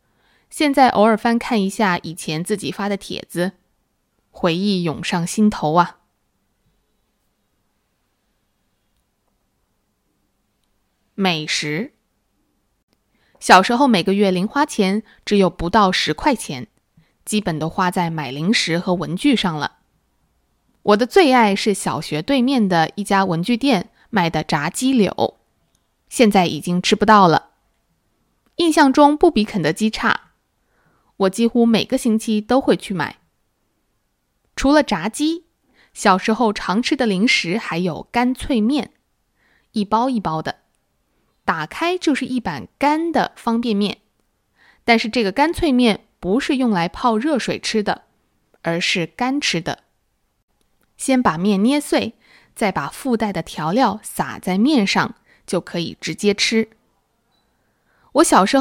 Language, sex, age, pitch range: English, female, 20-39, 175-245 Hz